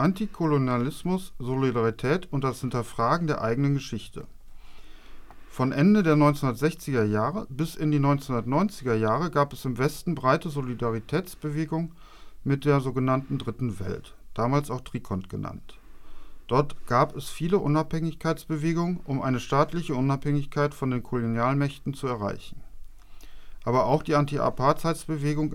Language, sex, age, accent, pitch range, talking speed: German, male, 40-59, German, 125-155 Hz, 120 wpm